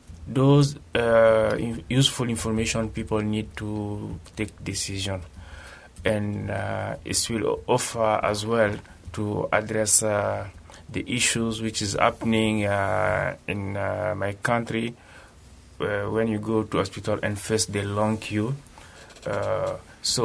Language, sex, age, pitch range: Japanese, male, 30-49, 100-115 Hz